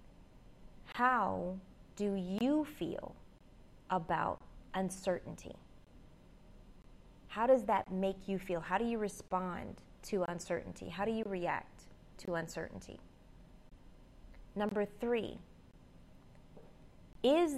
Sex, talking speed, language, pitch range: female, 90 wpm, English, 175-220 Hz